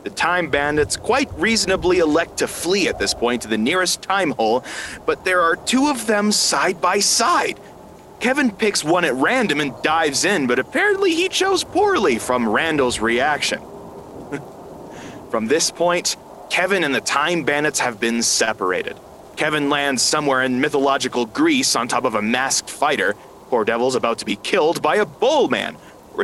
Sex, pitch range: male, 150-240 Hz